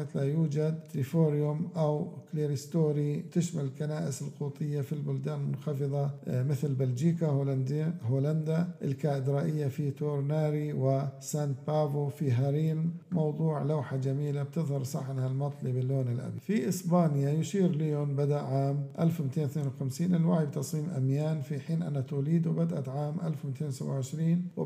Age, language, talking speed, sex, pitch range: 50-69, Arabic, 115 wpm, male, 140-160 Hz